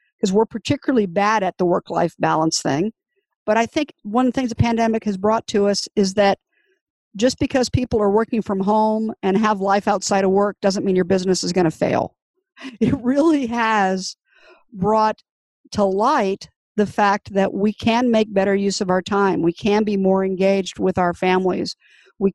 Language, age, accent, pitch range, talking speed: English, 50-69, American, 195-240 Hz, 190 wpm